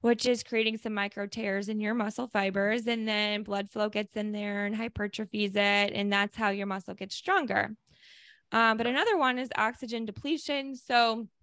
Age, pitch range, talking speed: 20-39, 200-230 Hz, 185 wpm